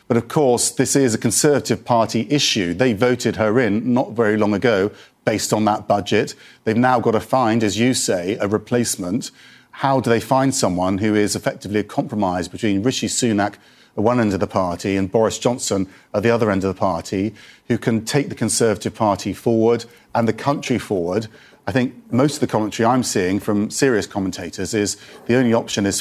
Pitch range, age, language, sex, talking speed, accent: 105-125 Hz, 40-59, English, male, 200 wpm, British